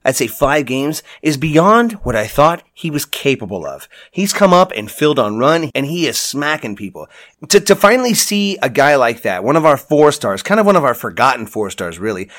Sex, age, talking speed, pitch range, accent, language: male, 30-49, 230 wpm, 115-170 Hz, American, English